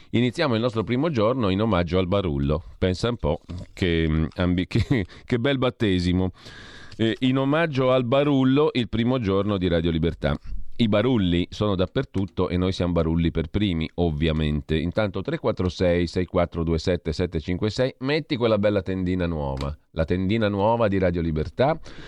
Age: 40-59